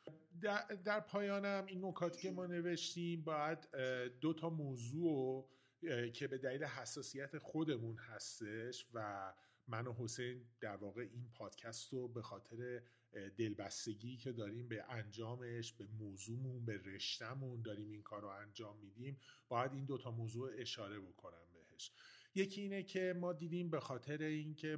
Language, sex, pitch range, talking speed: Persian, male, 110-150 Hz, 145 wpm